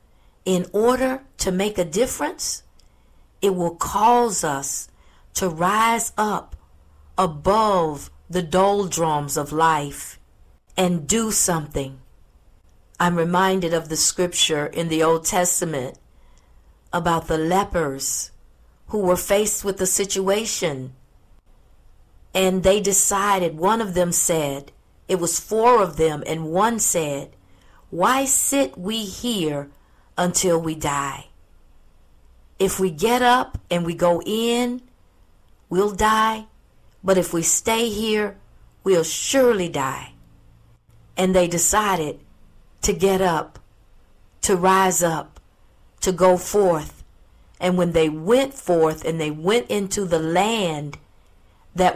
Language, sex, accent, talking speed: English, female, American, 120 wpm